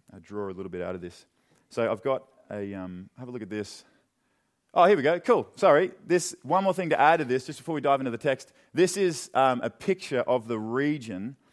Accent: Australian